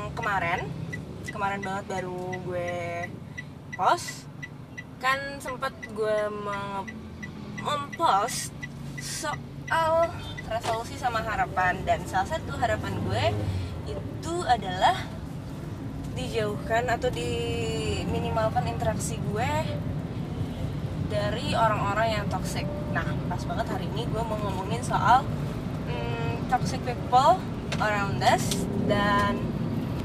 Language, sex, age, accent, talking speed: Indonesian, female, 20-39, native, 90 wpm